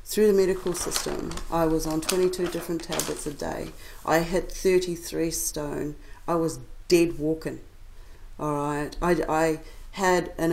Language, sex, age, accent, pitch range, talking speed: English, female, 40-59, Australian, 145-175 Hz, 150 wpm